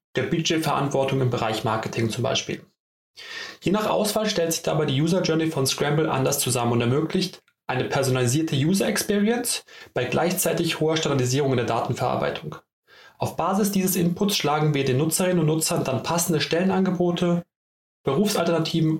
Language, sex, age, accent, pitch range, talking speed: German, male, 30-49, German, 140-185 Hz, 150 wpm